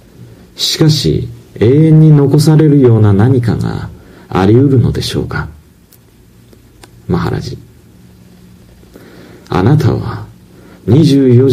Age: 50-69